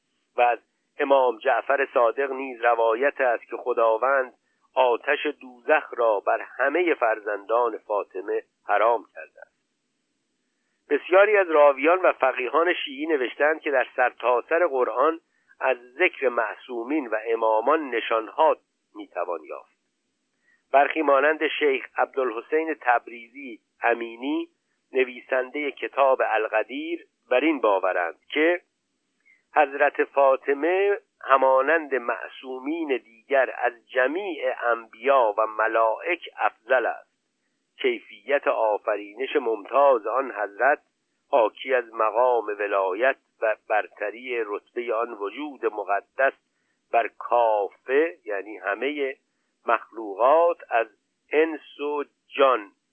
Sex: male